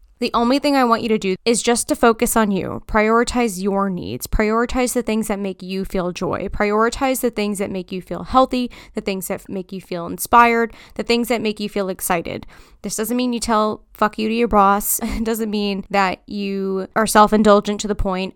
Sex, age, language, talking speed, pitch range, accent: female, 10-29, English, 220 wpm, 190-225 Hz, American